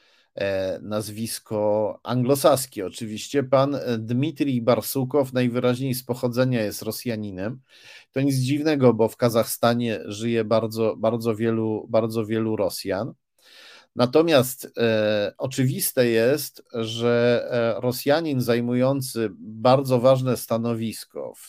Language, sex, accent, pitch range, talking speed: Polish, male, native, 105-125 Hz, 100 wpm